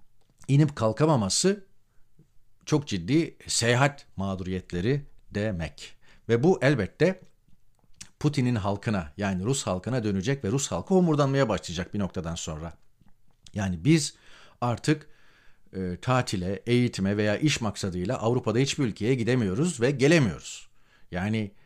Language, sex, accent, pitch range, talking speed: Turkish, male, native, 100-140 Hz, 110 wpm